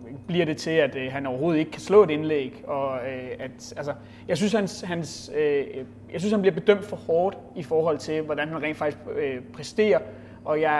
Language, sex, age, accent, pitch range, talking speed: Danish, male, 30-49, native, 130-170 Hz, 215 wpm